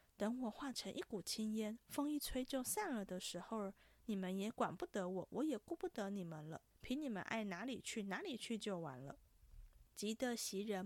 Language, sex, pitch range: Chinese, female, 195-250 Hz